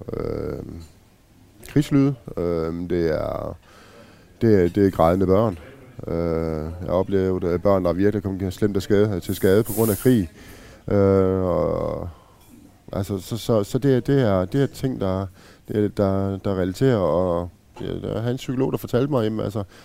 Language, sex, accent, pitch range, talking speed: Danish, male, native, 95-115 Hz, 180 wpm